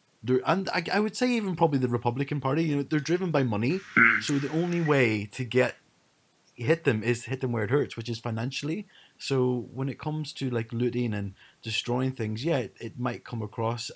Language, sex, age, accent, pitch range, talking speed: English, male, 30-49, British, 105-135 Hz, 210 wpm